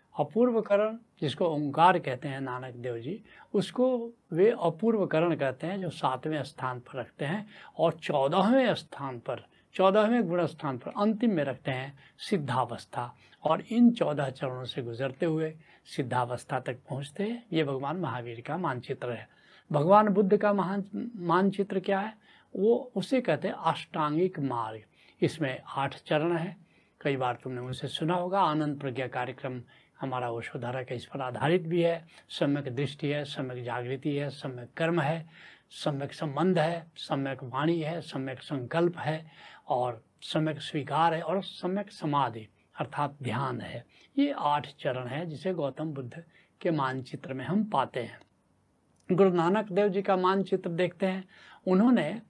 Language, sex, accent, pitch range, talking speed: Hindi, male, native, 135-190 Hz, 150 wpm